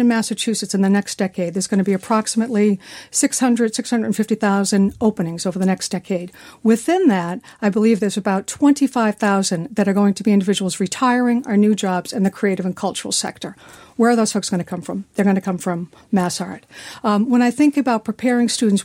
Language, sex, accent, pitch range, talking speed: English, female, American, 195-240 Hz, 190 wpm